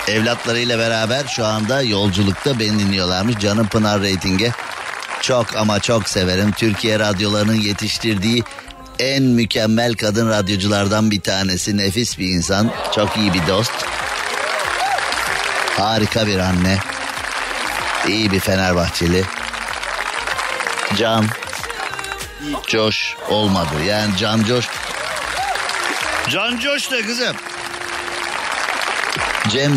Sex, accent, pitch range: male, native, 105-170 Hz